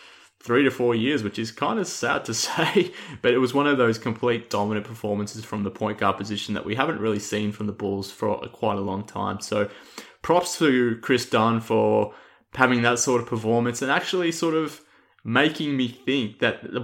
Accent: Australian